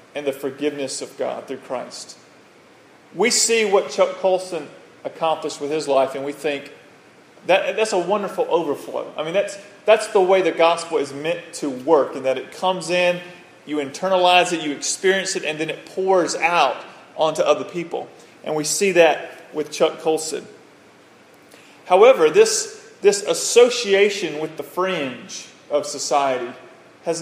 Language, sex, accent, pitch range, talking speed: English, male, American, 150-190 Hz, 160 wpm